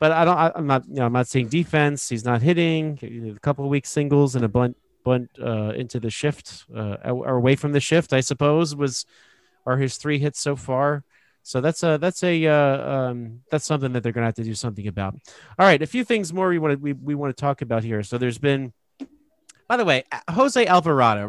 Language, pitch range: English, 120-155 Hz